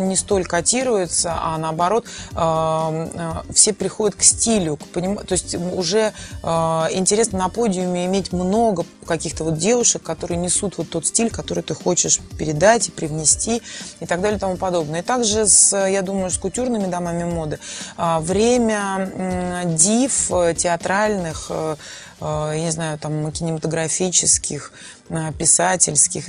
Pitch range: 165-195 Hz